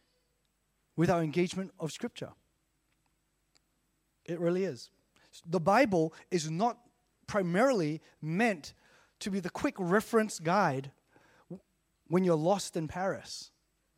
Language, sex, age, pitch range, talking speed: English, male, 30-49, 165-220 Hz, 105 wpm